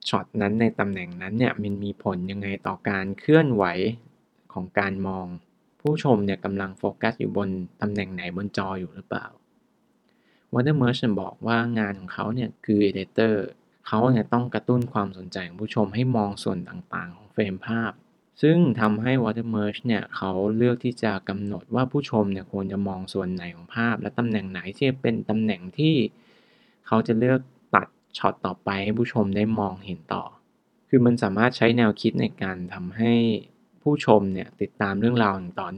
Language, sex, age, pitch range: Thai, male, 20-39, 100-120 Hz